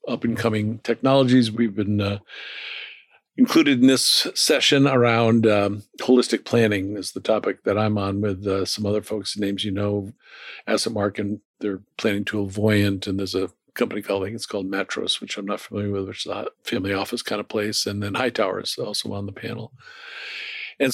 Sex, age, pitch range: male, 50-69, 100-115 Hz